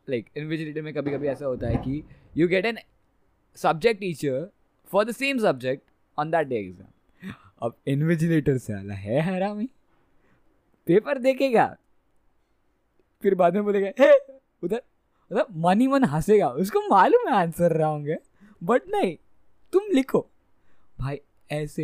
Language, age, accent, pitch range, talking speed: Hindi, 20-39, native, 125-190 Hz, 145 wpm